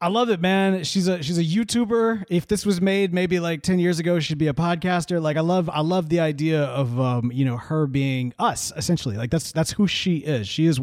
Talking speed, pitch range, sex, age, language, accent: 250 wpm, 140-190 Hz, male, 30-49, English, American